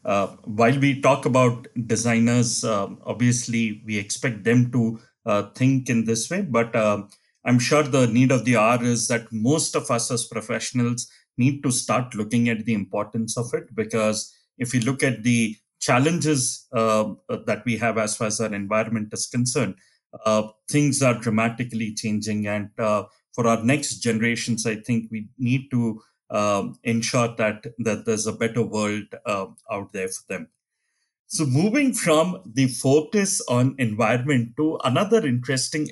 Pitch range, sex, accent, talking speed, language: 110-130 Hz, male, Indian, 165 wpm, English